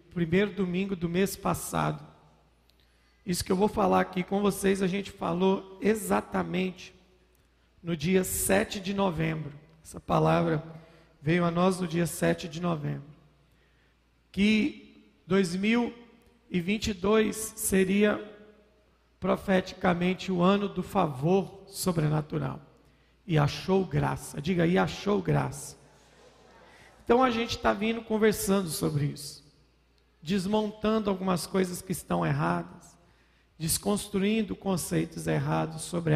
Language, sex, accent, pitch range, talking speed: Portuguese, male, Brazilian, 145-195 Hz, 110 wpm